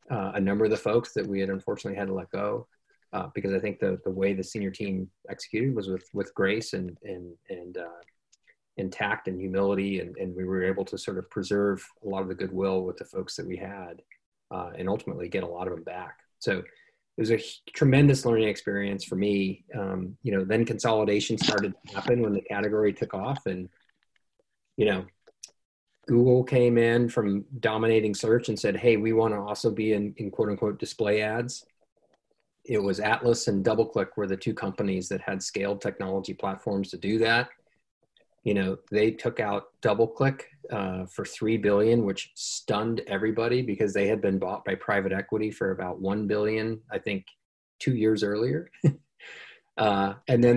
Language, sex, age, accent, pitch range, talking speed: English, male, 30-49, American, 95-115 Hz, 190 wpm